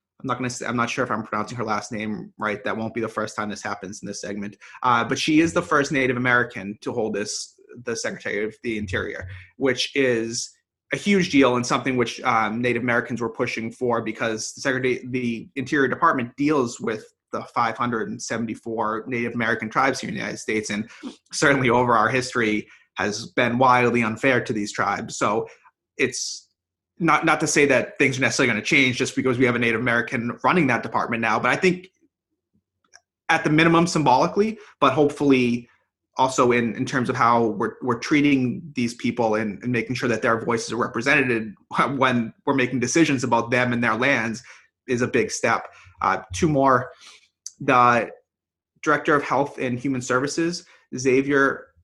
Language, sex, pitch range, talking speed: English, male, 115-140 Hz, 190 wpm